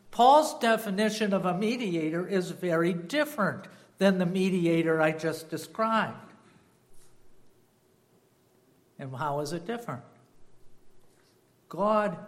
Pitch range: 140-185 Hz